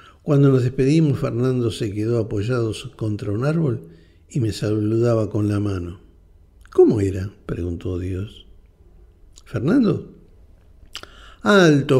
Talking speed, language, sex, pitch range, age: 110 wpm, Spanish, male, 85-125 Hz, 60-79